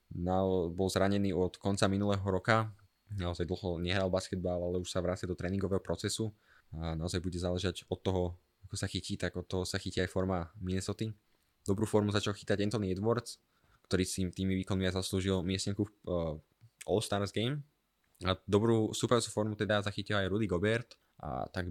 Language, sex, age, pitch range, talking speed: Slovak, male, 20-39, 90-110 Hz, 175 wpm